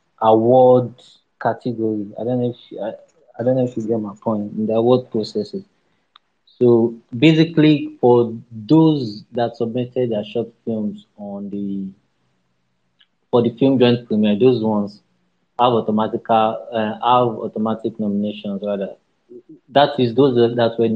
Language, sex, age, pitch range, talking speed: English, male, 20-39, 110-130 Hz, 145 wpm